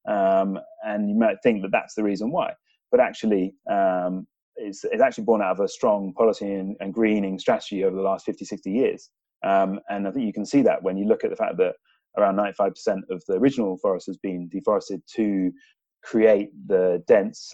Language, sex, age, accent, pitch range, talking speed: English, male, 30-49, British, 95-160 Hz, 210 wpm